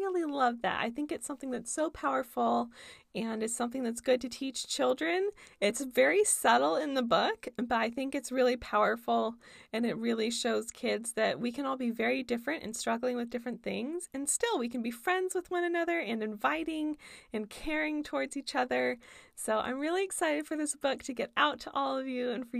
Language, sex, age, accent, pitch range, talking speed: English, female, 20-39, American, 240-355 Hz, 205 wpm